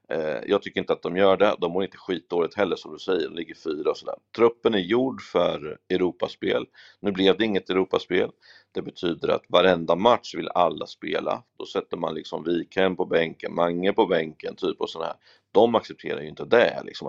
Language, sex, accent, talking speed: Swedish, male, native, 200 wpm